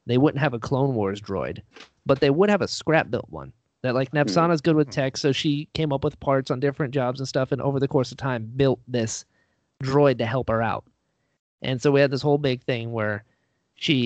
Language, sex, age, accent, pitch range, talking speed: English, male, 30-49, American, 125-165 Hz, 230 wpm